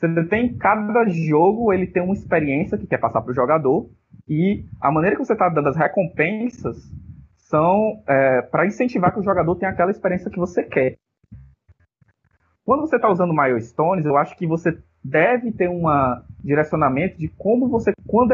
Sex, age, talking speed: male, 20-39, 175 wpm